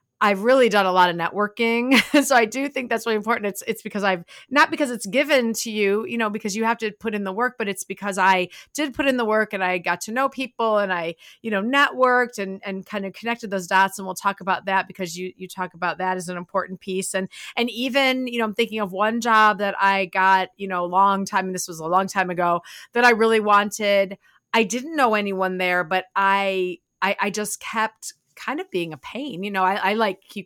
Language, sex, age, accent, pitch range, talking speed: English, female, 30-49, American, 190-245 Hz, 250 wpm